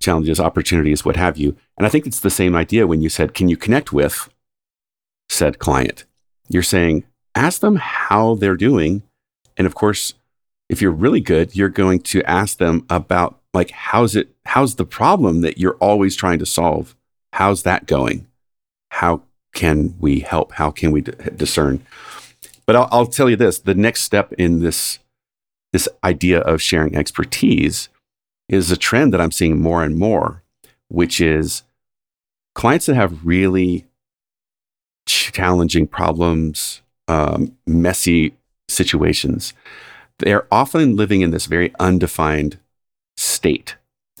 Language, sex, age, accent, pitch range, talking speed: English, male, 50-69, American, 80-100 Hz, 150 wpm